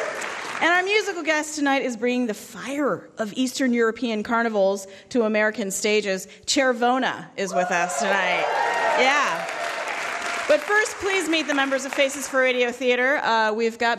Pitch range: 215-310 Hz